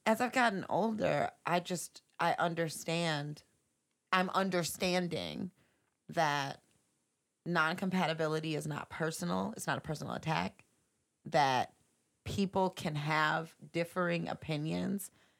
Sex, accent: female, American